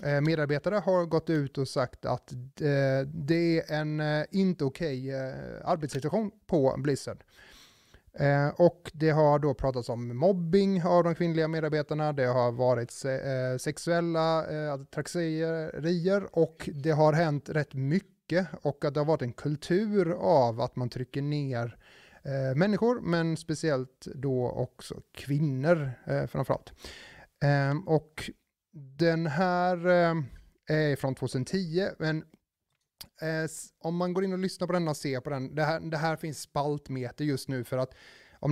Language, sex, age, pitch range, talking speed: Swedish, male, 30-49, 135-170 Hz, 135 wpm